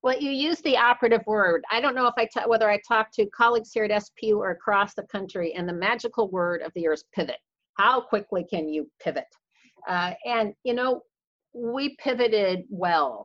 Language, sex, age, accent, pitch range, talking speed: English, female, 50-69, American, 170-235 Hz, 205 wpm